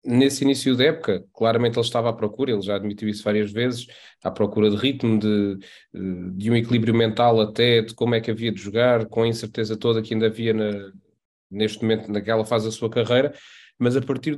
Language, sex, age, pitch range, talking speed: Portuguese, male, 20-39, 115-135 Hz, 210 wpm